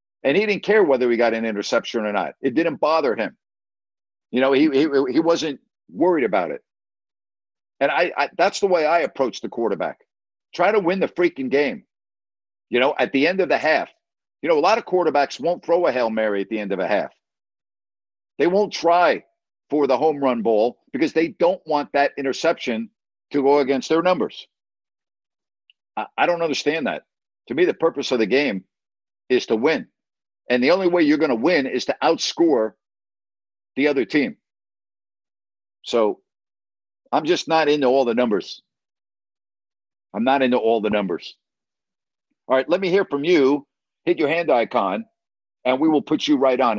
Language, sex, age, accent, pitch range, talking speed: English, male, 50-69, American, 110-175 Hz, 185 wpm